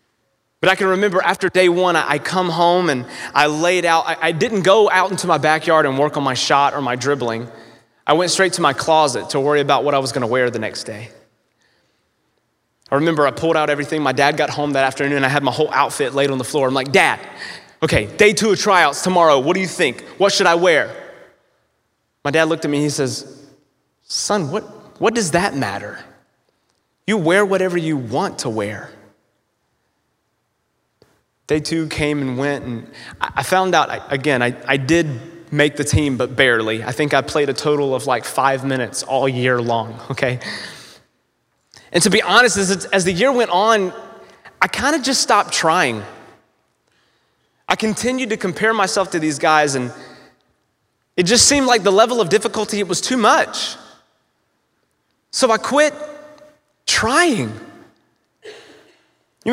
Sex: male